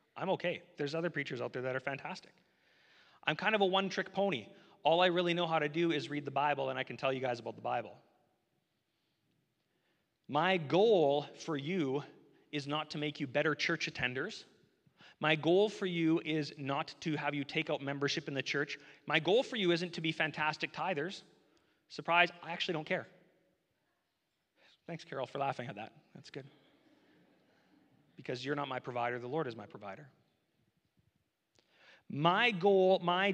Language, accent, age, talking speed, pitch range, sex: English, American, 30-49, 175 wpm, 150-180 Hz, male